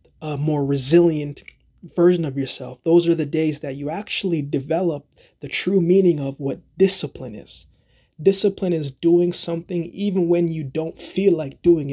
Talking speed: 160 wpm